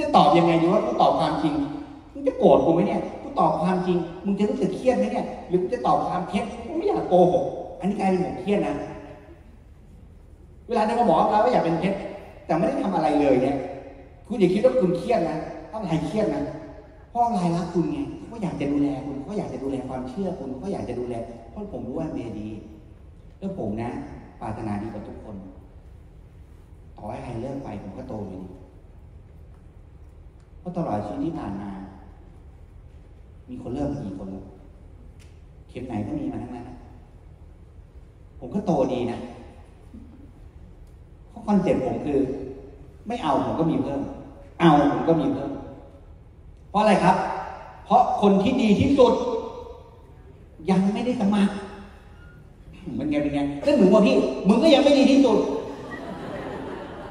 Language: Thai